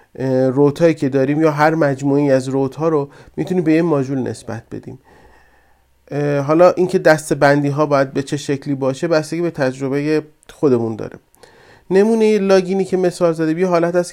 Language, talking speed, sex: Persian, 165 wpm, male